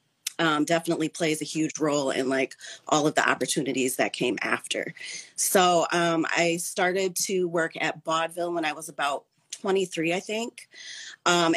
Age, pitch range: 30-49, 155-180 Hz